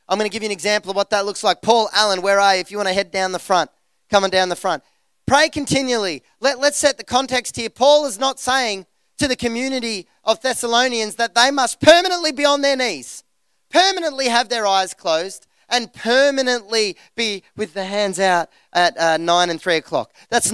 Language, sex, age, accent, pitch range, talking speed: English, male, 20-39, Australian, 175-235 Hz, 215 wpm